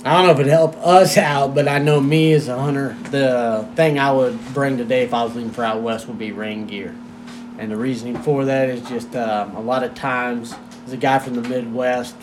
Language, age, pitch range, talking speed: English, 30-49, 125-155 Hz, 250 wpm